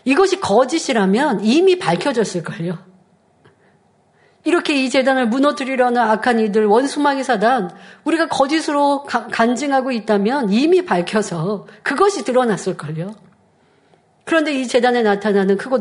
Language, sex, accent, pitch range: Korean, female, native, 210-315 Hz